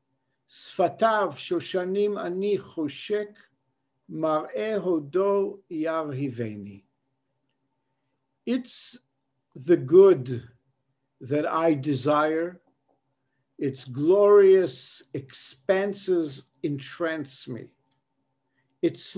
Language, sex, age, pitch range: English, male, 60-79, 135-210 Hz